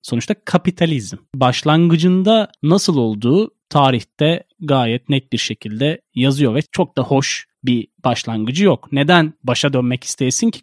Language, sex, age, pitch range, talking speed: Turkish, male, 30-49, 125-190 Hz, 130 wpm